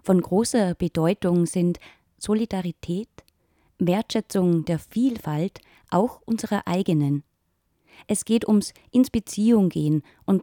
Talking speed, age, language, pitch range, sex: 105 wpm, 20-39, German, 160-215 Hz, female